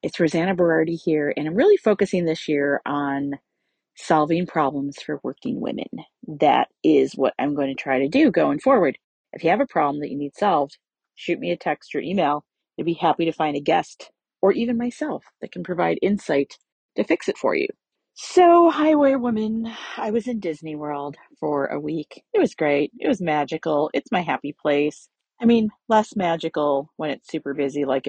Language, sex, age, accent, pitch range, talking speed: English, female, 40-59, American, 150-240 Hz, 195 wpm